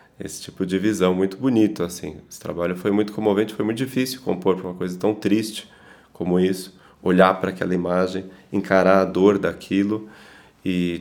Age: 20-39